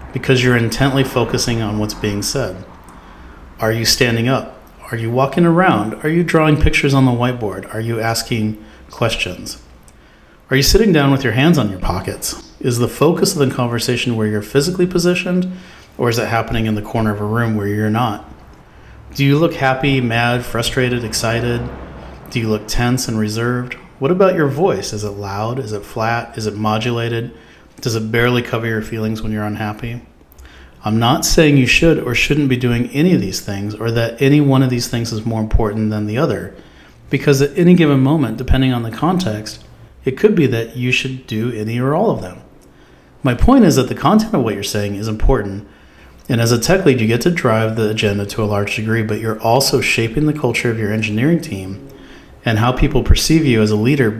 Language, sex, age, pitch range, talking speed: English, male, 40-59, 105-135 Hz, 205 wpm